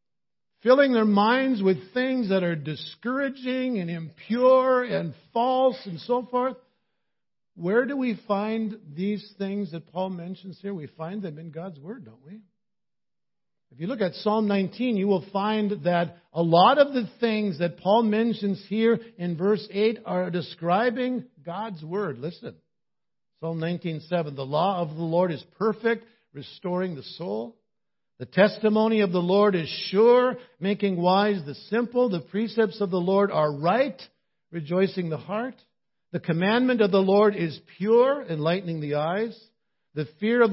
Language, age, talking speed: English, 50-69, 155 wpm